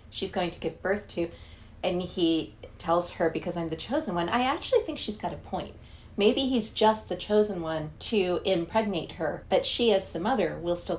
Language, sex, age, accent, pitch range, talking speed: English, female, 30-49, American, 165-205 Hz, 210 wpm